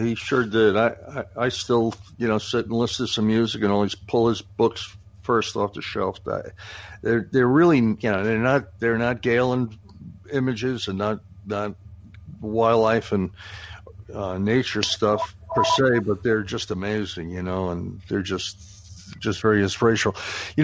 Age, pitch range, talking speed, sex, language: 60-79, 95-120 Hz, 165 wpm, male, English